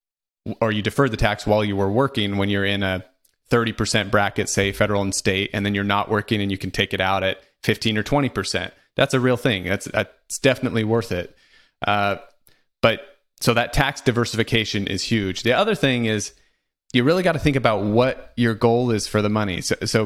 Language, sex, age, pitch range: English, male, 30-49, 100-115 Hz